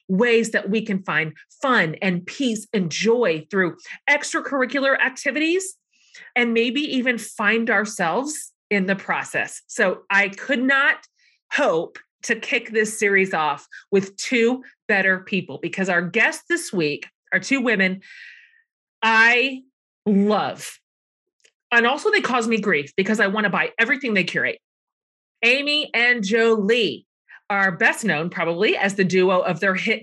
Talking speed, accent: 145 wpm, American